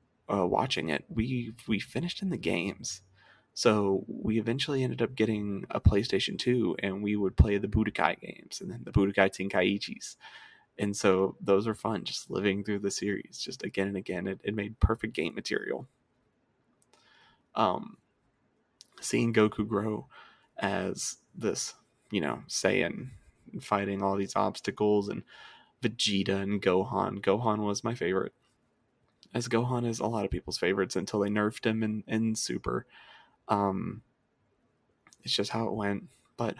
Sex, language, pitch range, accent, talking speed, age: male, English, 100-115 Hz, American, 150 wpm, 20-39